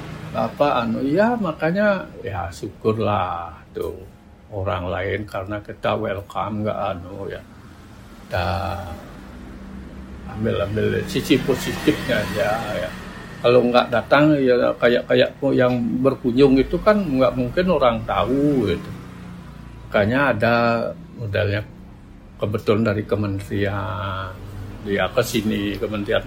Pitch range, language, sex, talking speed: 105-165 Hz, Indonesian, male, 105 wpm